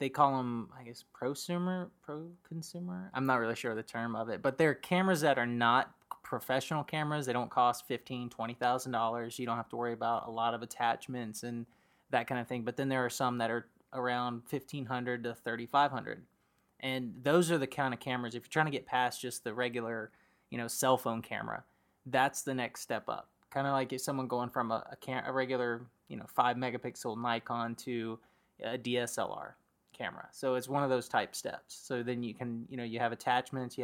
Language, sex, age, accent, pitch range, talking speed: English, male, 20-39, American, 120-135 Hz, 210 wpm